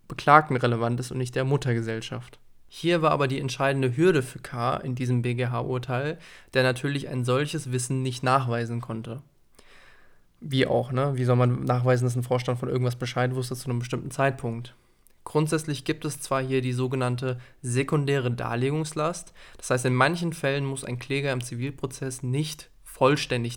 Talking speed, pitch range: 165 wpm, 125-140 Hz